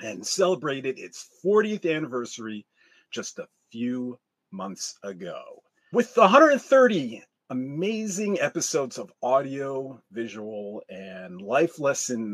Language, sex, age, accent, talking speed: English, male, 40-59, American, 95 wpm